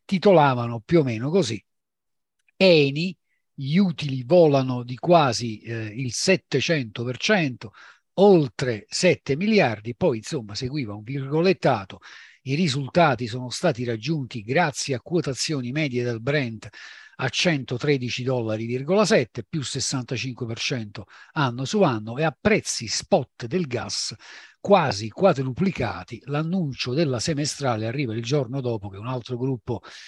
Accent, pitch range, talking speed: native, 125-175 Hz, 120 wpm